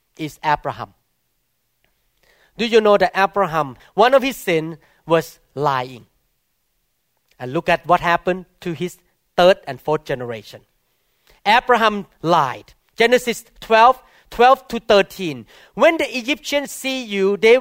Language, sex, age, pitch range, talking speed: English, male, 40-59, 165-245 Hz, 125 wpm